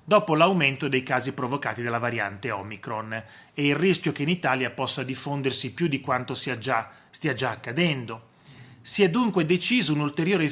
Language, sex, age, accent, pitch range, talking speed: Italian, male, 30-49, native, 125-165 Hz, 160 wpm